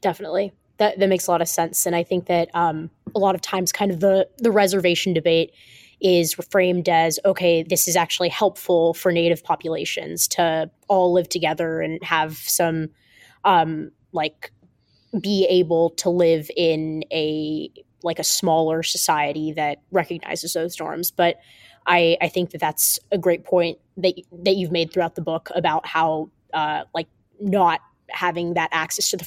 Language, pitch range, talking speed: English, 165-185 Hz, 170 wpm